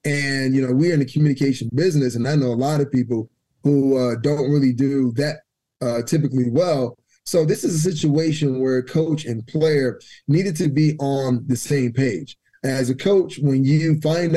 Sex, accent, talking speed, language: male, American, 195 wpm, English